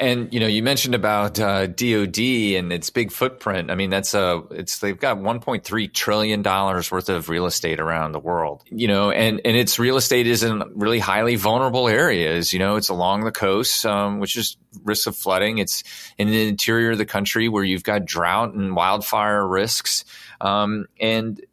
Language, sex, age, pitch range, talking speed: English, male, 30-49, 95-115 Hz, 195 wpm